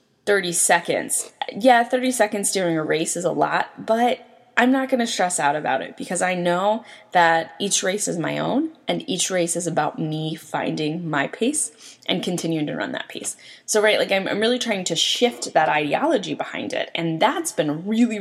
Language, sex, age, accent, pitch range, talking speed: English, female, 20-39, American, 160-225 Hz, 200 wpm